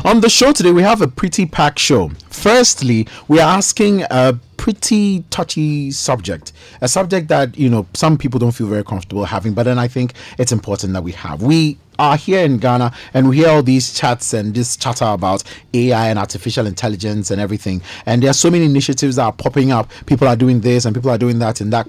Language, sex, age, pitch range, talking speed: English, male, 30-49, 105-135 Hz, 220 wpm